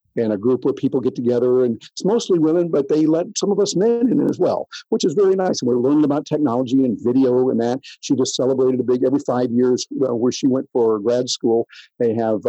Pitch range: 125-200 Hz